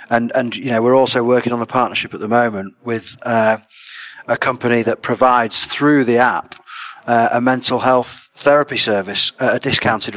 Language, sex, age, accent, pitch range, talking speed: English, male, 40-59, British, 110-130 Hz, 185 wpm